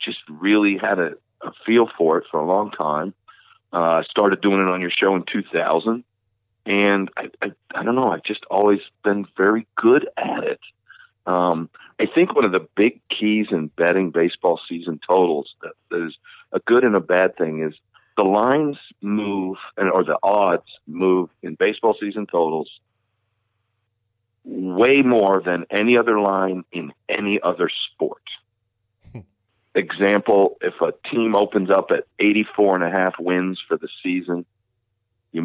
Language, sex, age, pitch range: English, male, 50-69, 90-110 Hz